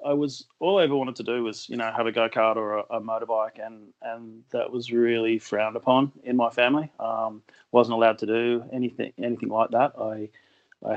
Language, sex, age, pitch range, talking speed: English, male, 30-49, 115-130 Hz, 220 wpm